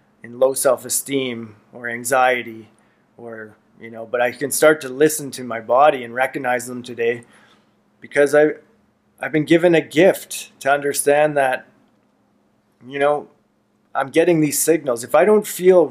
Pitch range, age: 115-140 Hz, 20-39